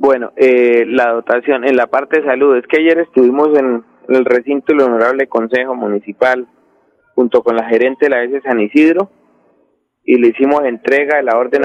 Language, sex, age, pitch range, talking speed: Spanish, male, 30-49, 120-145 Hz, 195 wpm